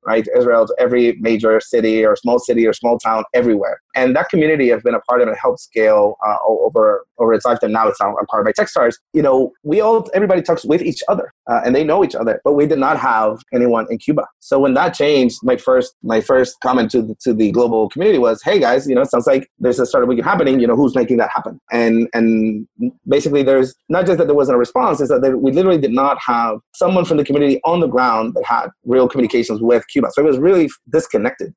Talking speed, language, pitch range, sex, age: 245 wpm, English, 115-145 Hz, male, 30-49